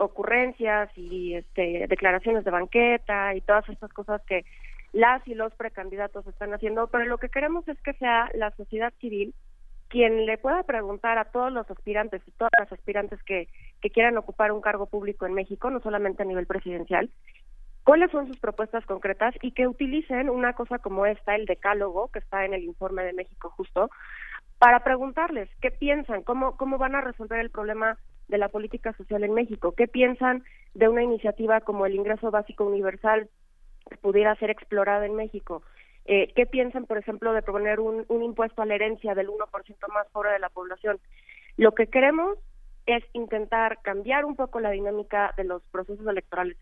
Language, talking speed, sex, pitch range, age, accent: Spanish, 180 wpm, female, 200-235 Hz, 30-49, Mexican